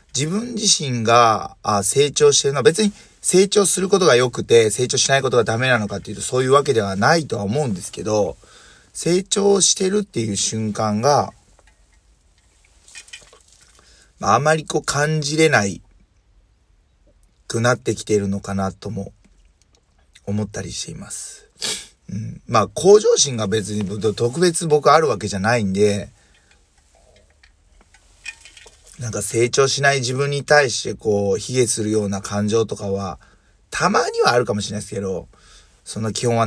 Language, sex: Japanese, male